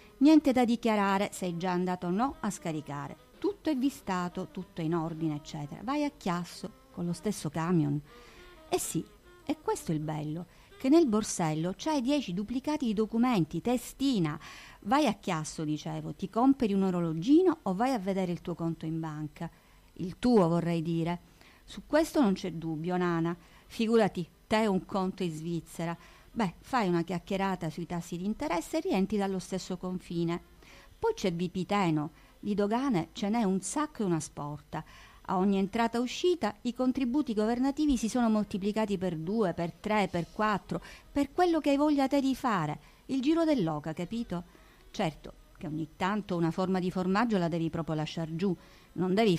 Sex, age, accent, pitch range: female, 50-69, native, 170-245 Hz